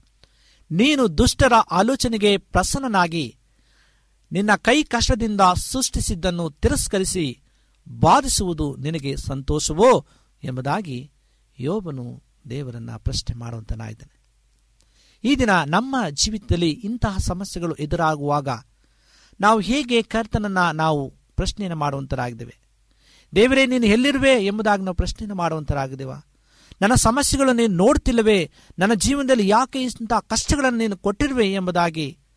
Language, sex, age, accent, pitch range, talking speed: Polish, male, 50-69, Indian, 135-210 Hz, 80 wpm